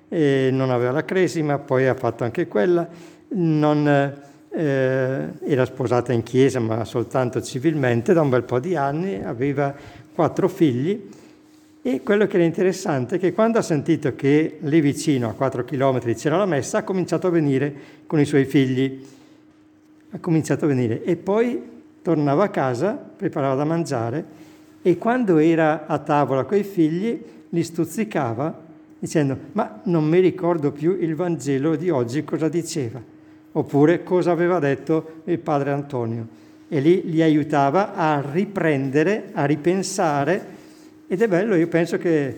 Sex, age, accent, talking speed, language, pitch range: male, 50-69, native, 155 wpm, Italian, 140-175 Hz